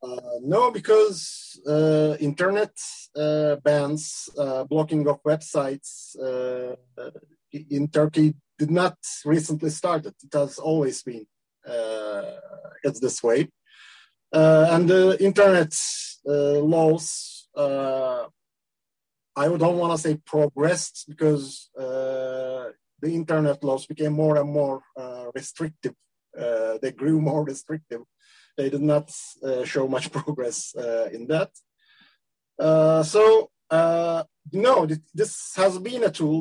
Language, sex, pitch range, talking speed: Turkish, male, 140-165 Hz, 125 wpm